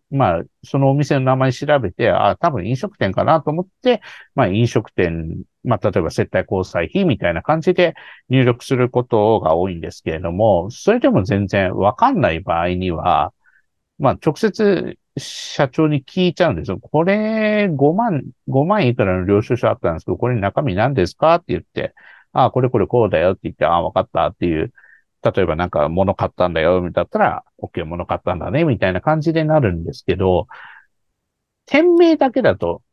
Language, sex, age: Japanese, male, 50-69